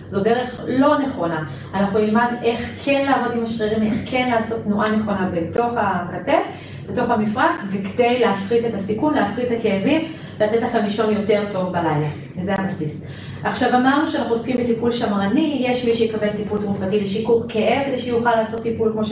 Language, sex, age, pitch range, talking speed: English, female, 30-49, 205-245 Hz, 145 wpm